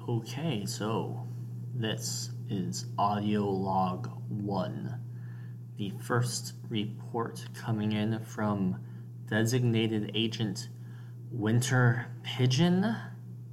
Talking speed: 75 wpm